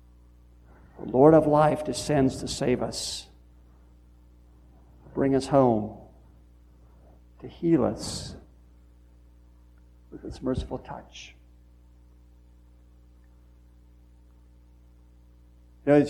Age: 60-79